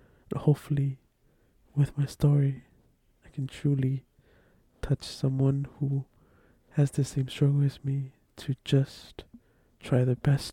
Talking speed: 120 wpm